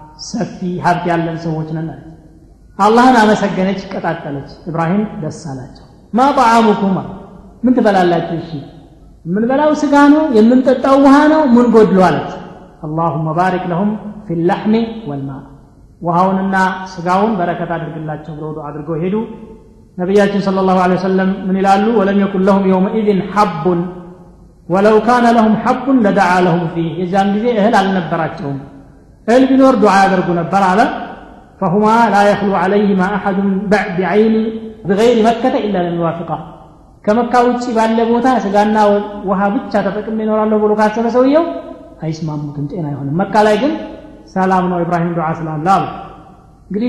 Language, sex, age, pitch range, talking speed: Amharic, male, 30-49, 170-215 Hz, 125 wpm